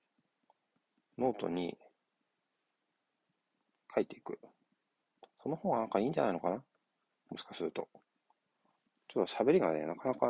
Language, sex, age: Japanese, male, 40-59